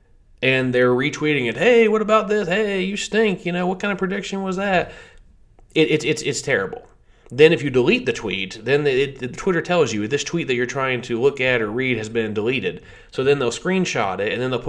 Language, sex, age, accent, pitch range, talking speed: English, male, 30-49, American, 110-140 Hz, 235 wpm